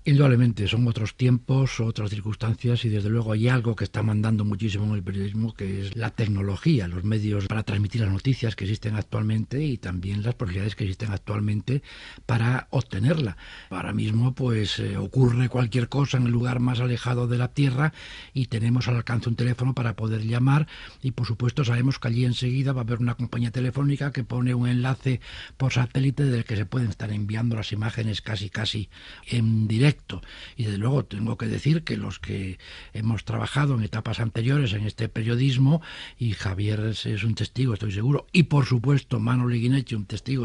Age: 60-79